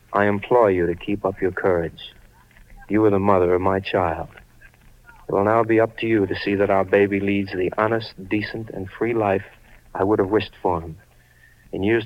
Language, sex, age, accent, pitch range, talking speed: English, male, 60-79, American, 95-110 Hz, 210 wpm